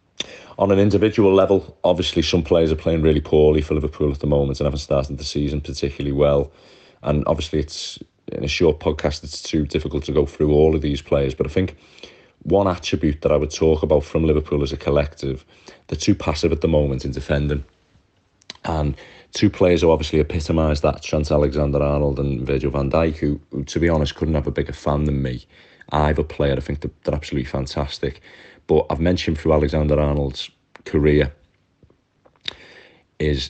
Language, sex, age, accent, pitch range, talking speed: English, male, 30-49, British, 70-75 Hz, 185 wpm